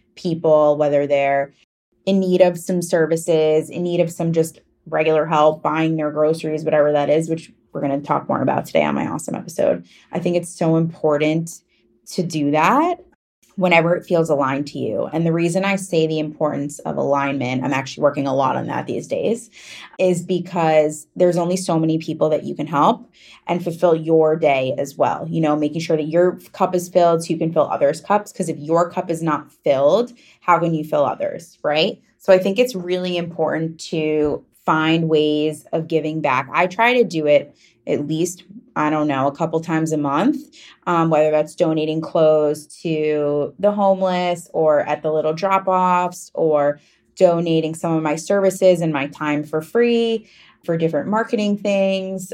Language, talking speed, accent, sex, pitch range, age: English, 190 wpm, American, female, 150-180 Hz, 20-39